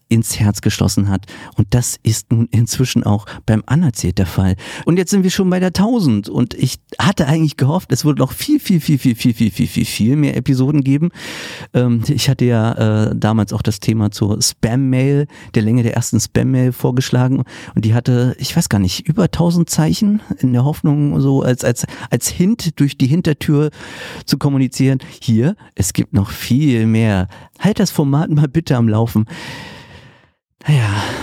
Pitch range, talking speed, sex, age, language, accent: 110-145 Hz, 185 wpm, male, 50-69, German, German